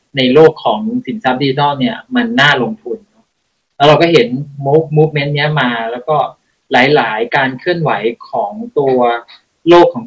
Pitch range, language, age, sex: 130-185 Hz, Thai, 20-39, male